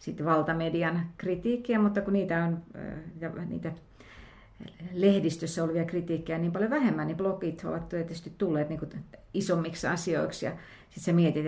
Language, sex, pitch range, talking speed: Finnish, female, 160-185 Hz, 140 wpm